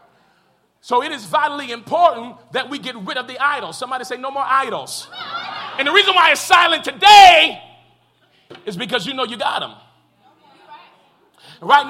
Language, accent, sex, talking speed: English, American, male, 160 wpm